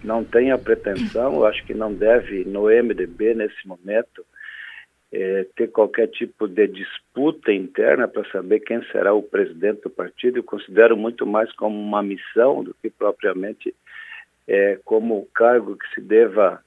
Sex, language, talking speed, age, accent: male, Portuguese, 160 wpm, 50-69, Brazilian